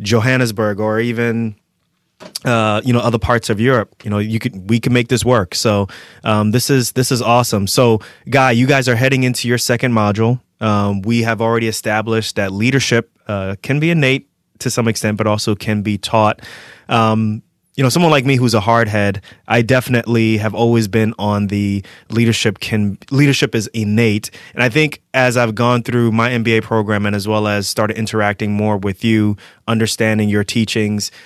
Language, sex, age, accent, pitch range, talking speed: English, male, 20-39, American, 105-120 Hz, 190 wpm